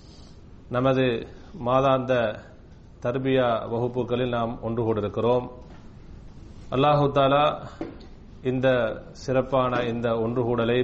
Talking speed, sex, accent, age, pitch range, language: 70 wpm, male, native, 30-49, 115-140 Hz, Tamil